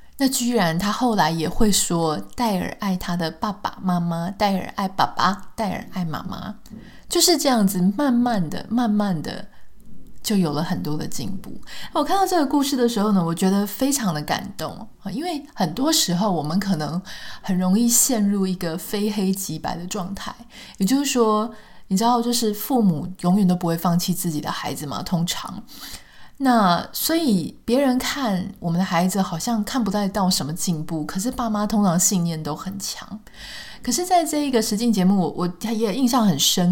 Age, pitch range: 20-39, 175-230 Hz